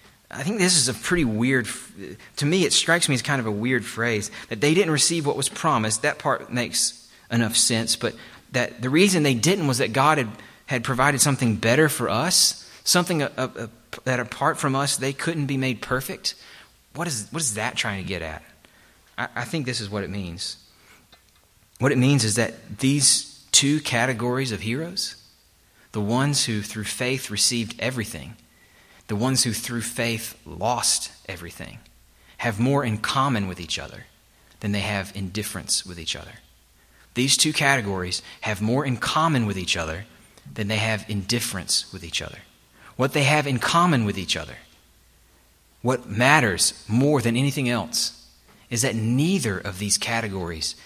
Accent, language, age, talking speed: American, English, 30-49, 175 wpm